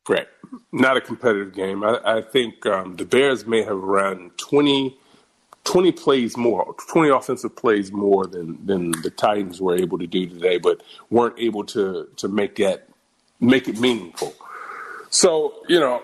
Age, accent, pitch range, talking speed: 40-59, American, 105-150 Hz, 165 wpm